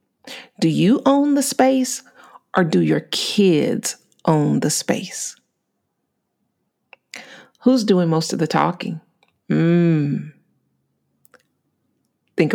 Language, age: English, 40-59